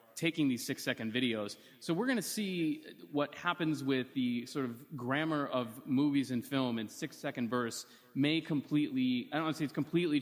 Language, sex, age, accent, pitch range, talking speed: English, male, 30-49, American, 120-145 Hz, 190 wpm